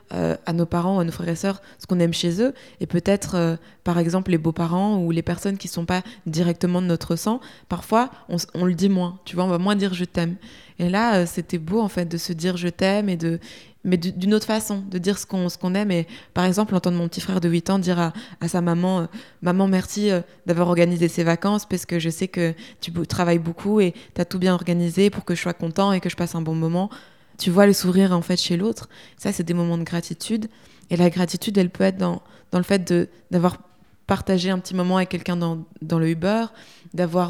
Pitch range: 170-195 Hz